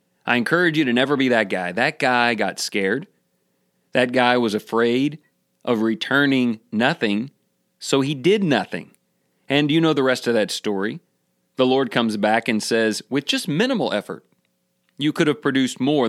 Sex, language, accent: male, English, American